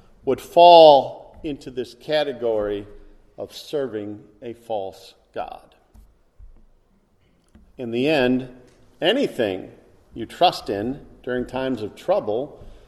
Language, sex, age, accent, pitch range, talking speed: English, male, 50-69, American, 115-165 Hz, 100 wpm